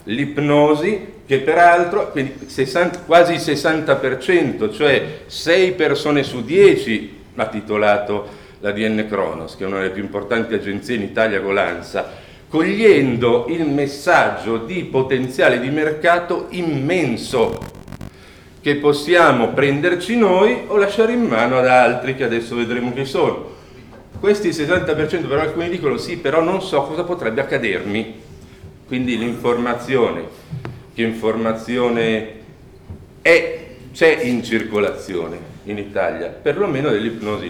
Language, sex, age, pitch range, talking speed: Italian, male, 50-69, 115-165 Hz, 120 wpm